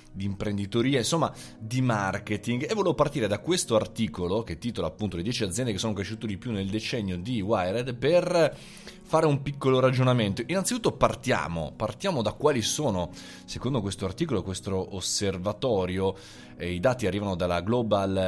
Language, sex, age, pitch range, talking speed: Italian, male, 20-39, 90-115 Hz, 160 wpm